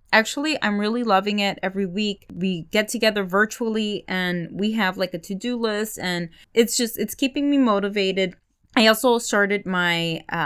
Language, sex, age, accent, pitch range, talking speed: English, female, 20-39, American, 190-250 Hz, 170 wpm